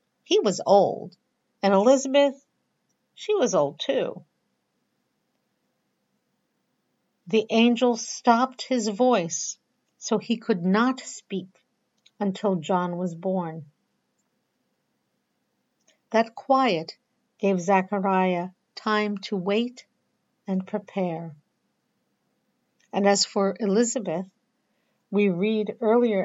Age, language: 60-79, English